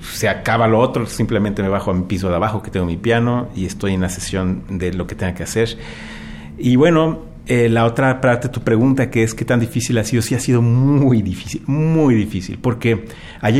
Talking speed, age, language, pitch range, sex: 230 wpm, 40-59, Spanish, 110-140 Hz, male